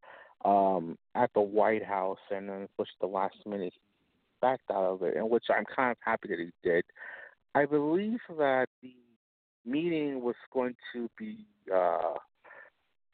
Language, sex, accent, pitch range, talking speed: English, male, American, 100-125 Hz, 155 wpm